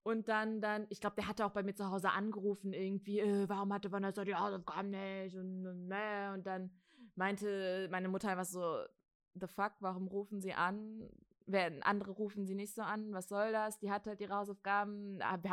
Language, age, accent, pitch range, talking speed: German, 20-39, German, 180-205 Hz, 210 wpm